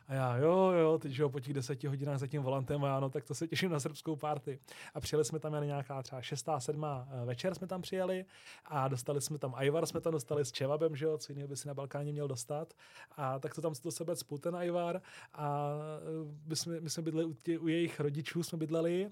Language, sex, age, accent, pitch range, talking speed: Czech, male, 30-49, native, 145-160 Hz, 235 wpm